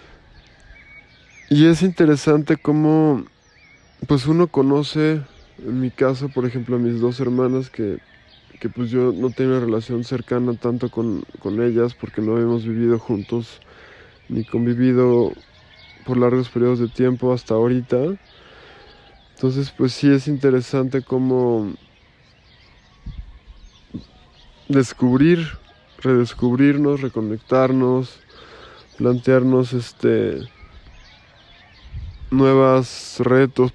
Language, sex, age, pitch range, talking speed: Spanish, male, 20-39, 115-135 Hz, 100 wpm